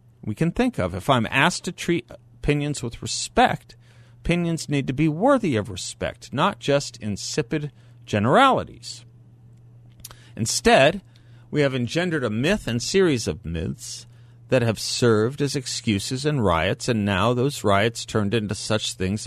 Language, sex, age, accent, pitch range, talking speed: English, male, 40-59, American, 110-135 Hz, 150 wpm